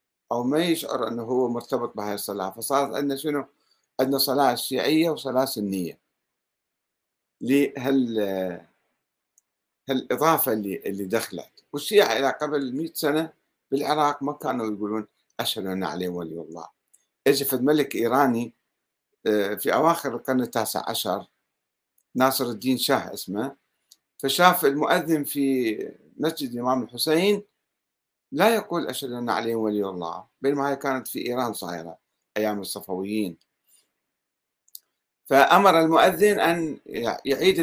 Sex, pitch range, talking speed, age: male, 110-155 Hz, 115 wpm, 60-79